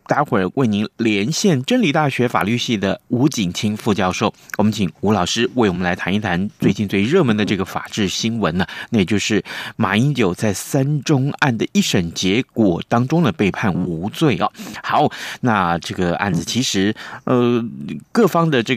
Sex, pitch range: male, 100-150 Hz